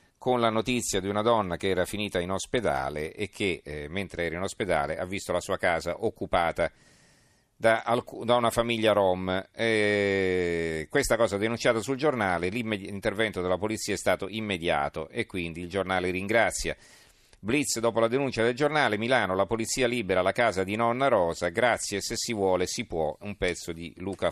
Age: 40-59